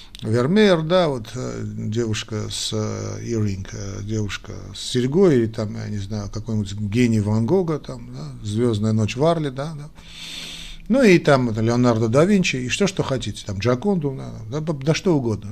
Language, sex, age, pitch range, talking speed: Russian, male, 50-69, 110-145 Hz, 170 wpm